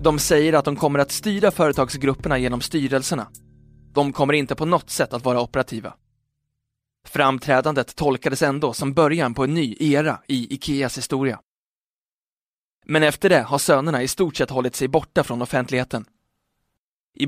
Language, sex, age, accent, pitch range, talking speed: Swedish, male, 20-39, native, 130-155 Hz, 155 wpm